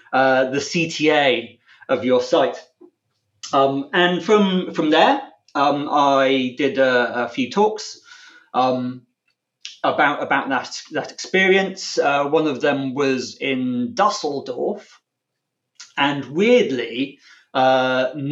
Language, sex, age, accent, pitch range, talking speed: English, male, 30-49, British, 130-190 Hz, 110 wpm